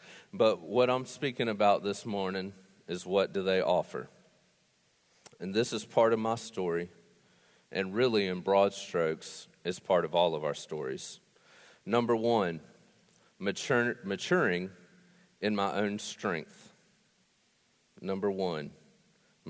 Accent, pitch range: American, 95-120 Hz